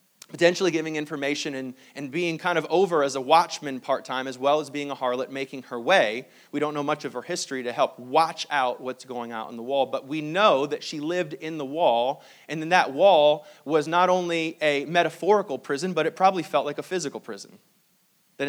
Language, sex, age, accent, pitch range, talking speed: English, male, 30-49, American, 135-175 Hz, 215 wpm